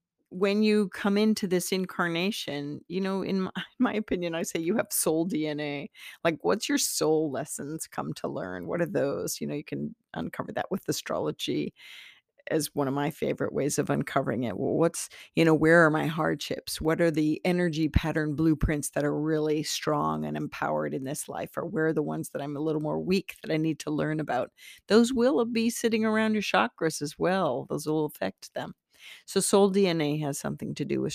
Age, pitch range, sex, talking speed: 40-59, 150-195 Hz, female, 205 wpm